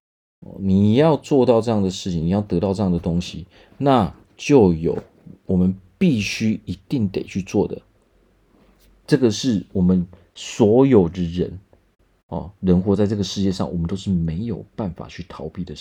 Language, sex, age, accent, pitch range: Chinese, male, 40-59, native, 90-105 Hz